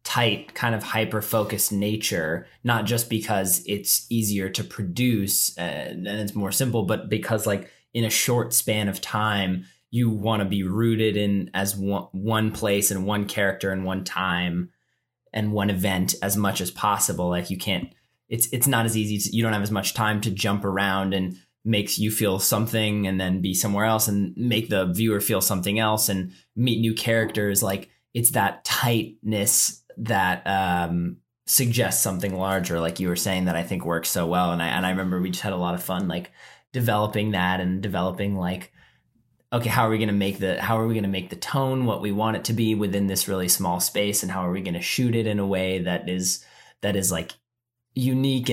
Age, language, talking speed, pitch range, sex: 20-39, English, 205 wpm, 95-110 Hz, male